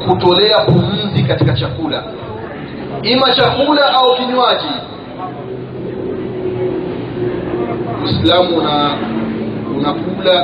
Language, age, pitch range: Swahili, 30-49, 140-180 Hz